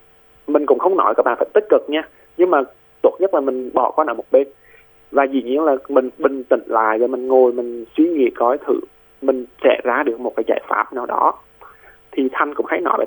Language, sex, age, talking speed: Vietnamese, male, 20-39, 245 wpm